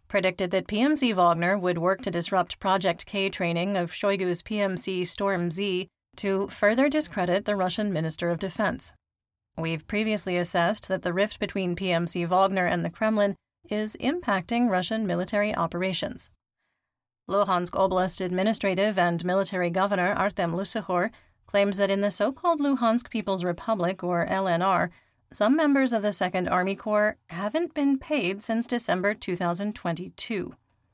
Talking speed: 140 wpm